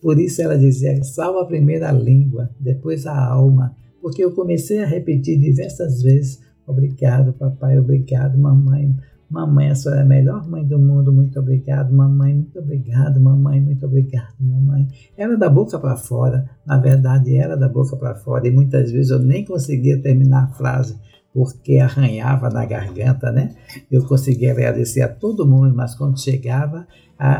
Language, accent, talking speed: Portuguese, Brazilian, 165 wpm